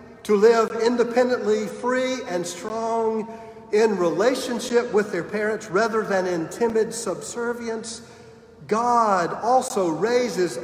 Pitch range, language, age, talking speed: 185-240 Hz, English, 50-69, 105 wpm